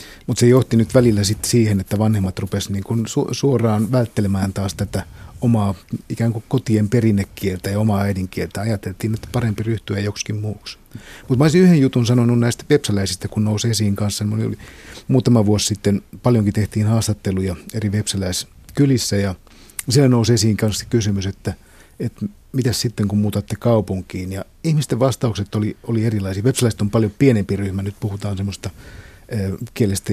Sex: male